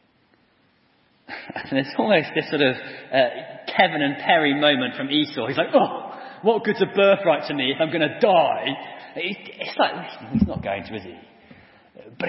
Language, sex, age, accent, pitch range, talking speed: English, male, 30-49, British, 180-235 Hz, 175 wpm